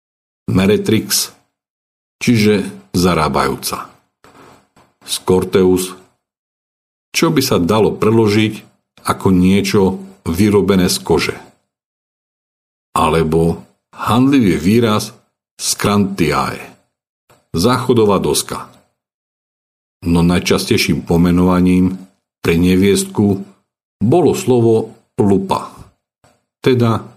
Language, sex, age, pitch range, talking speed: Slovak, male, 50-69, 90-115 Hz, 65 wpm